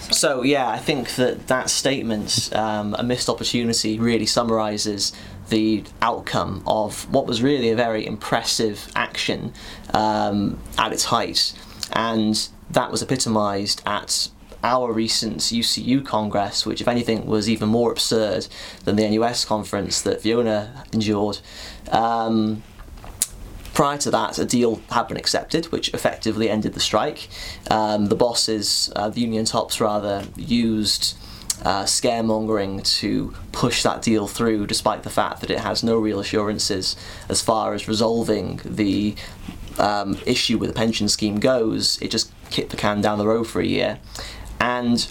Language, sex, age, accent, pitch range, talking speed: English, male, 20-39, British, 100-115 Hz, 150 wpm